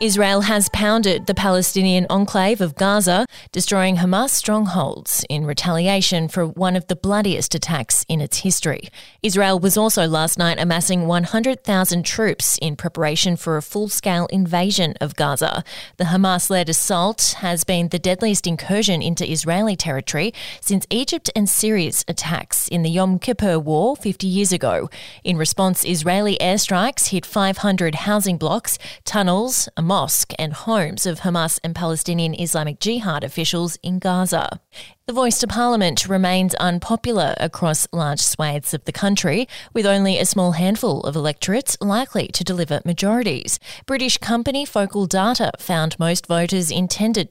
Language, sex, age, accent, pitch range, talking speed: English, female, 20-39, Australian, 165-205 Hz, 145 wpm